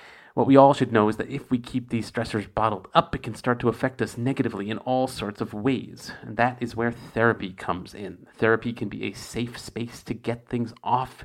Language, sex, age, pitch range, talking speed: English, male, 40-59, 105-130 Hz, 230 wpm